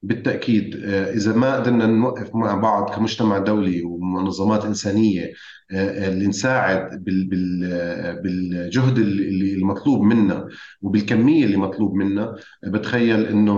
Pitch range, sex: 95-110 Hz, male